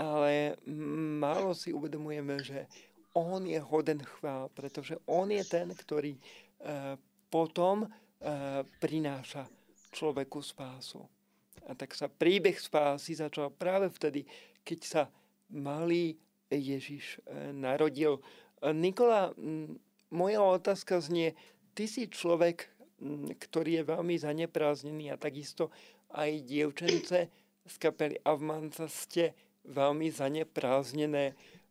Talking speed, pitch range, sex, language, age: 100 wpm, 150-180 Hz, male, Slovak, 40-59